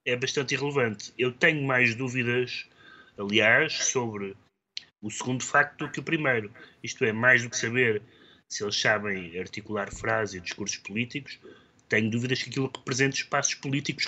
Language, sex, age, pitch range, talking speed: Portuguese, male, 30-49, 110-140 Hz, 160 wpm